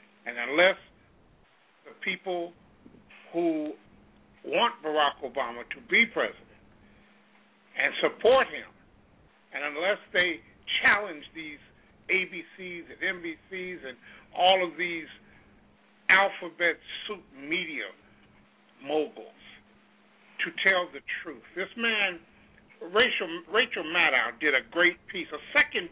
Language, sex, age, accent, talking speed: English, male, 50-69, American, 105 wpm